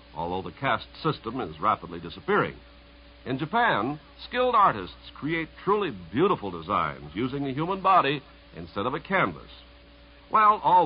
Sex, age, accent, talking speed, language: male, 60-79, American, 140 wpm, English